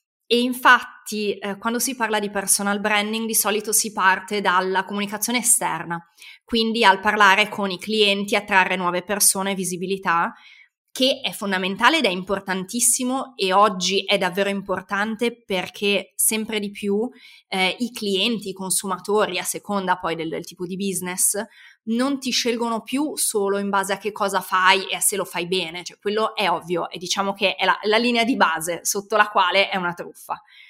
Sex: female